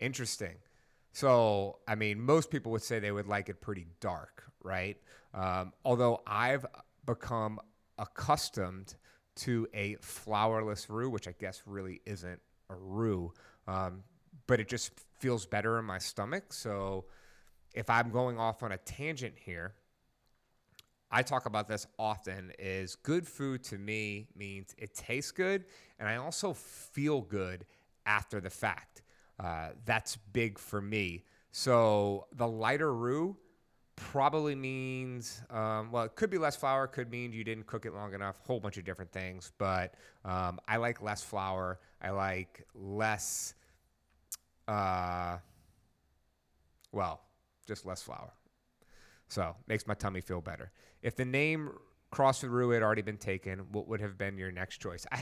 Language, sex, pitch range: English, male, 95-120 Hz